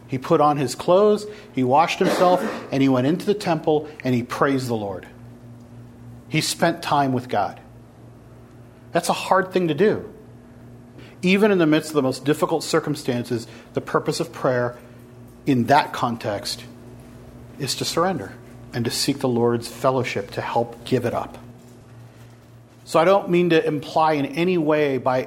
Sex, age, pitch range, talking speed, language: male, 40-59, 120-160 Hz, 165 wpm, English